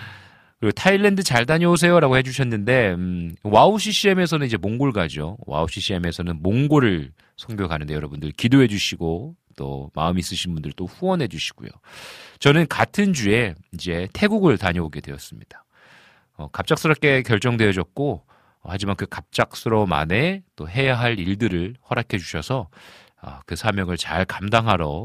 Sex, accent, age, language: male, native, 40-59, Korean